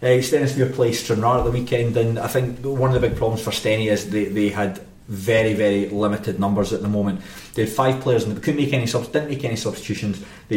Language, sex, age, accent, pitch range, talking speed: English, male, 30-49, British, 105-120 Hz, 245 wpm